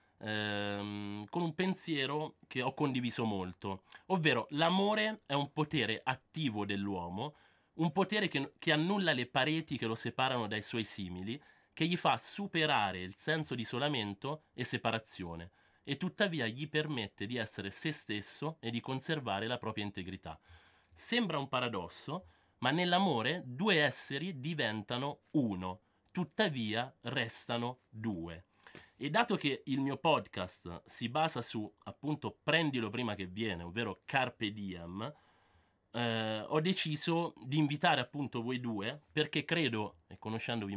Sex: male